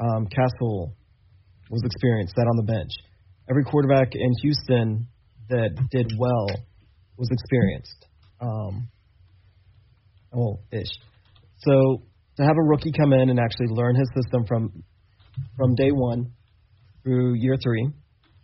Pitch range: 105-130 Hz